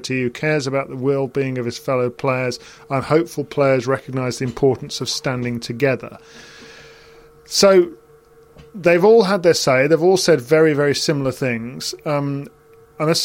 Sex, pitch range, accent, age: male, 125-155 Hz, British, 40-59